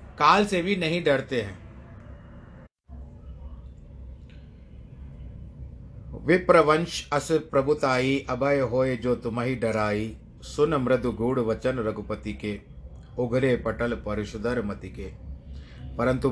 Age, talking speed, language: 60-79, 90 wpm, Hindi